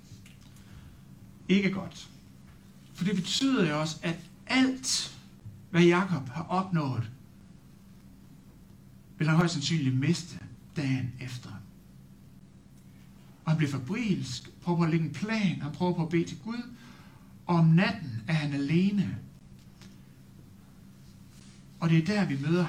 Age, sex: 60-79, male